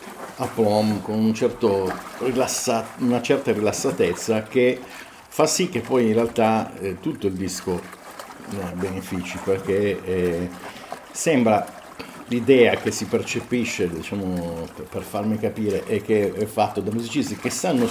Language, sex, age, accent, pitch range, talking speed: Italian, male, 50-69, native, 95-115 Hz, 125 wpm